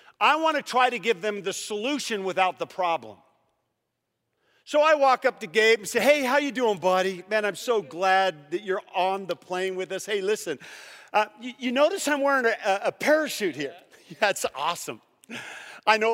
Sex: male